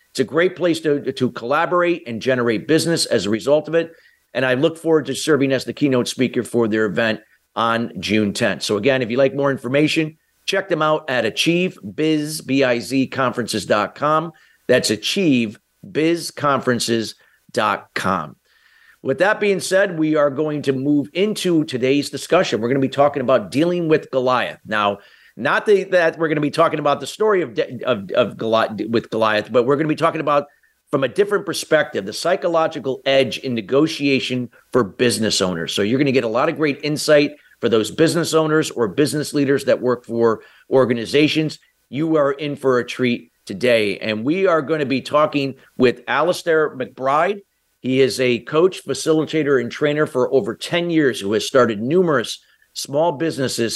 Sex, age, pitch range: male, 50-69, 125-160 Hz